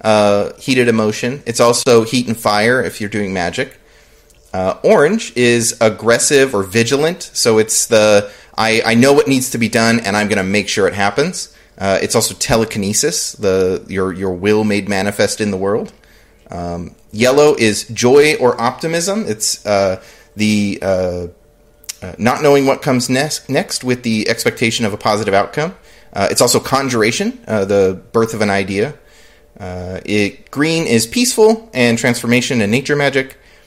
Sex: male